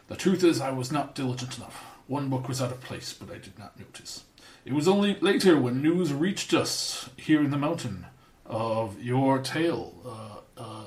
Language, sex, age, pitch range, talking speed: English, male, 40-59, 115-145 Hz, 200 wpm